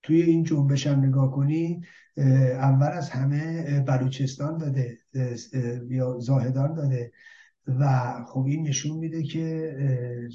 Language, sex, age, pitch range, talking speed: Persian, male, 60-79, 130-165 Hz, 115 wpm